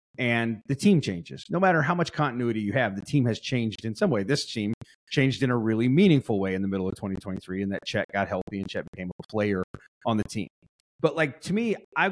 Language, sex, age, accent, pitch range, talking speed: English, male, 30-49, American, 105-140 Hz, 245 wpm